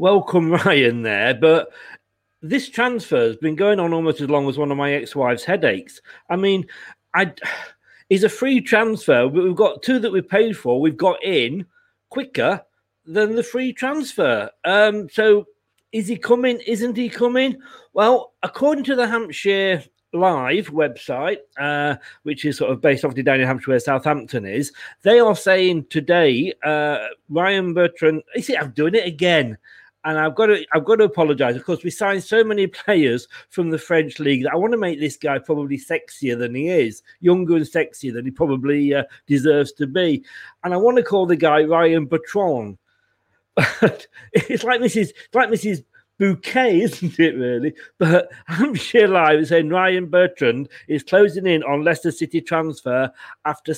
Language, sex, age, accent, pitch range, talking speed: English, male, 40-59, British, 145-215 Hz, 175 wpm